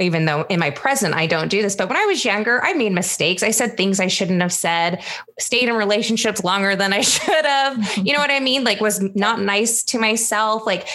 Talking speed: 240 wpm